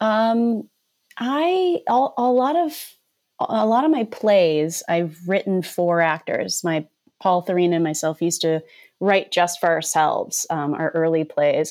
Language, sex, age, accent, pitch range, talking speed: English, female, 30-49, American, 150-185 Hz, 155 wpm